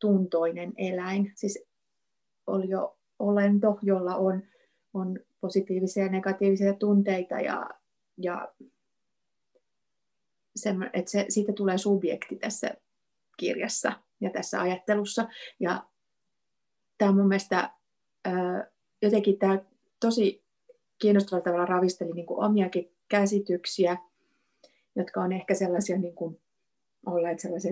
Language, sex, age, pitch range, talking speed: Finnish, female, 30-49, 175-205 Hz, 100 wpm